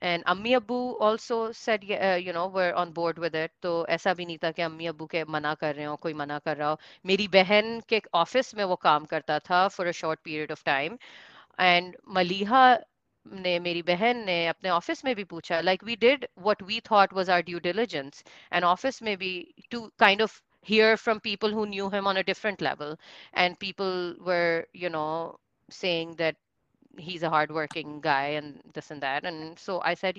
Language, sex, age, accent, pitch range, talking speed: English, female, 30-49, Indian, 165-215 Hz, 185 wpm